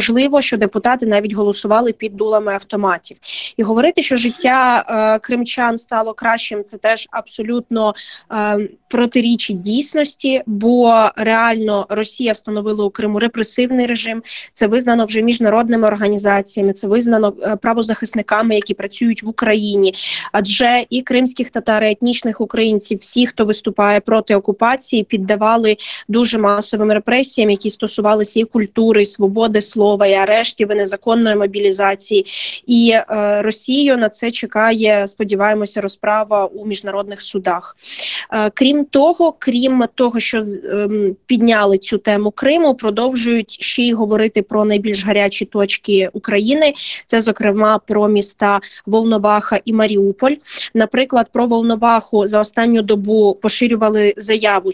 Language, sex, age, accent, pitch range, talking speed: Ukrainian, female, 20-39, native, 205-235 Hz, 125 wpm